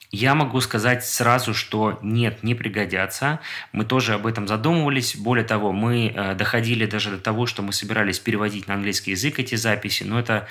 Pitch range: 105-120 Hz